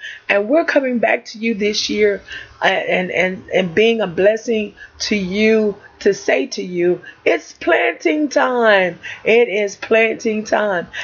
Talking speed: 145 wpm